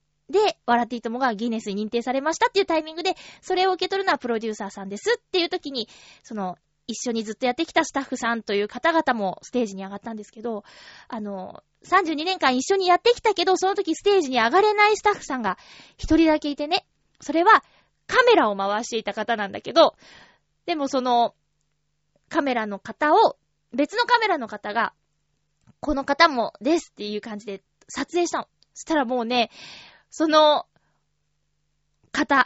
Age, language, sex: 20-39, Japanese, female